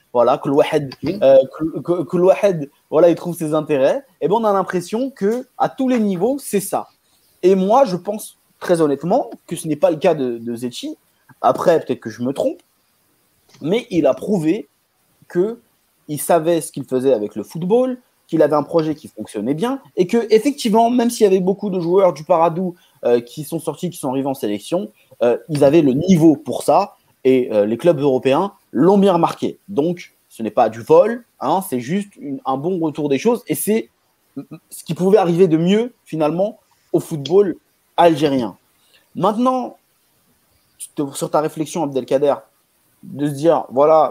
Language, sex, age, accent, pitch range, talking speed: French, male, 30-49, French, 140-195 Hz, 180 wpm